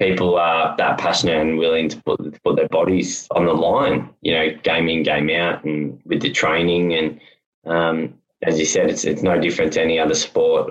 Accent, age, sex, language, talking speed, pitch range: Australian, 10-29, male, English, 205 wpm, 80-90 Hz